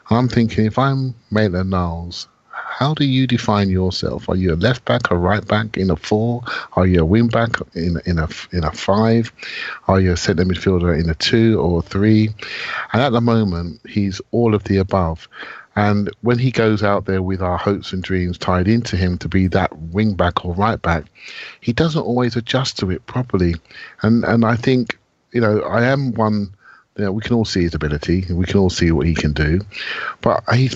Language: English